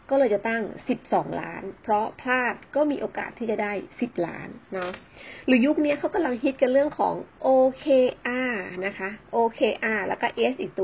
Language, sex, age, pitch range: Thai, female, 30-49, 200-270 Hz